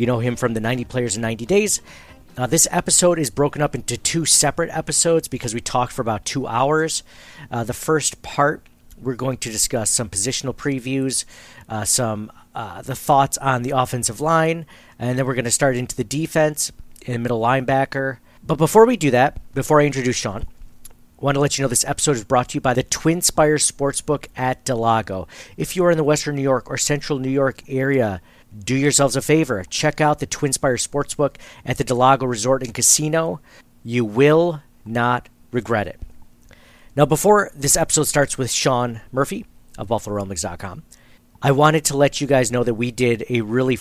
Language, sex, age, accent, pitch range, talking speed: English, male, 40-59, American, 115-145 Hz, 195 wpm